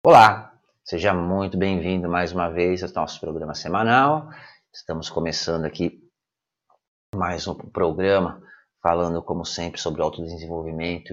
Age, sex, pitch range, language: 30-49, male, 85-115 Hz, Portuguese